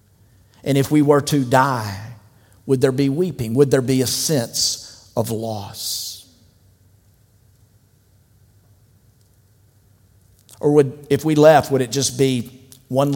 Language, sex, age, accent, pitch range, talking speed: English, male, 50-69, American, 110-150 Hz, 125 wpm